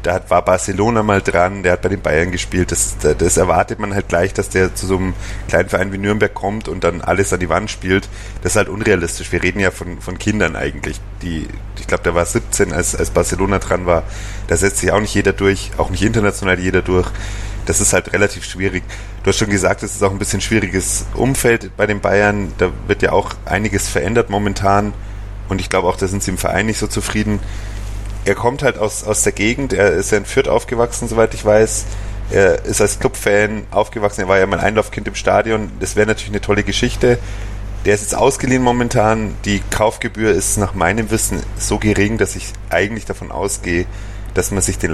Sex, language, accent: male, German, German